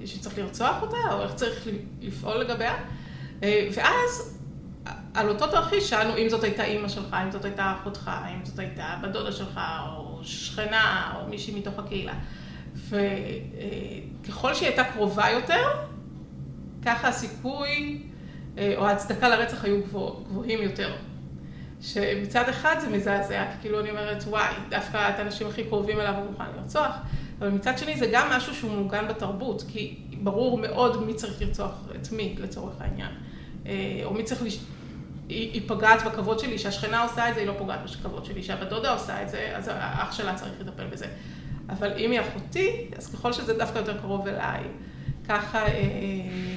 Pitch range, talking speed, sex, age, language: 195-225 Hz, 155 wpm, female, 30-49, Hebrew